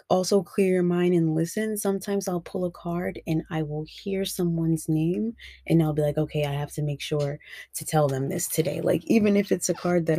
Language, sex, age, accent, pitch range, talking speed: English, female, 20-39, American, 150-180 Hz, 230 wpm